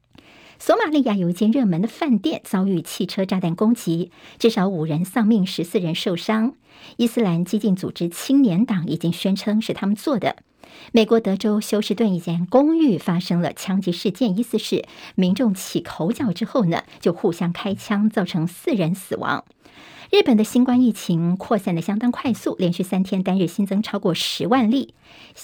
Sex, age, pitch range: male, 50-69, 180-225 Hz